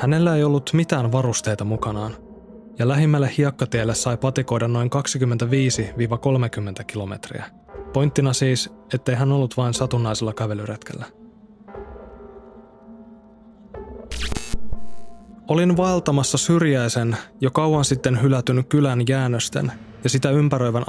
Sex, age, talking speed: male, 20-39, 100 wpm